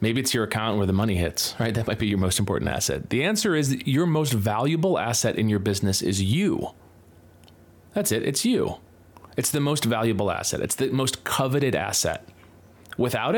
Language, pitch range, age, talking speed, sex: English, 95-120 Hz, 30-49, 195 wpm, male